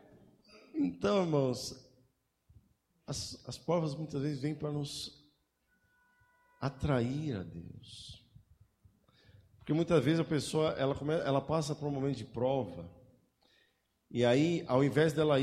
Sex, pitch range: male, 125-185 Hz